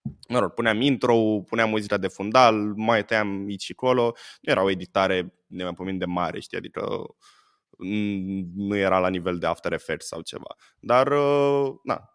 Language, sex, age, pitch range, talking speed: Romanian, male, 20-39, 95-135 Hz, 150 wpm